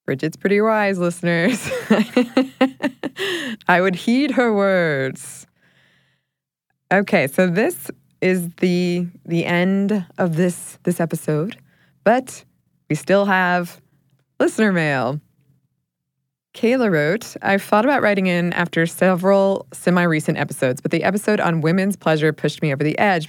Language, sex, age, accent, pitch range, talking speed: English, female, 20-39, American, 155-195 Hz, 125 wpm